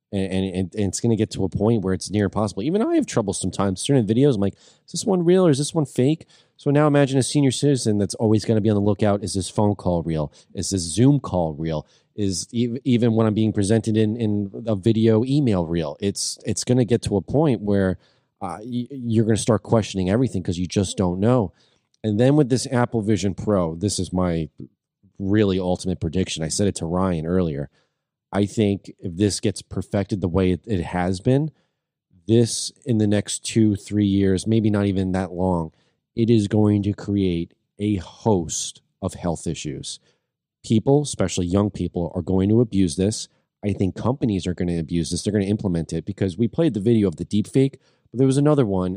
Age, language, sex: 30-49, English, male